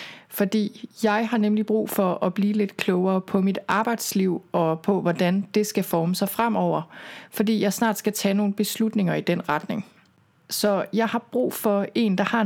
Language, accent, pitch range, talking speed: Danish, native, 180-215 Hz, 190 wpm